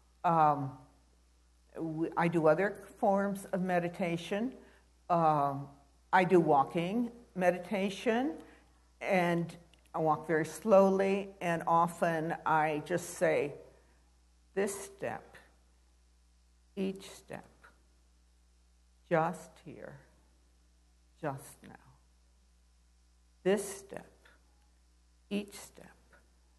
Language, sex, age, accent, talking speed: English, female, 60-79, American, 75 wpm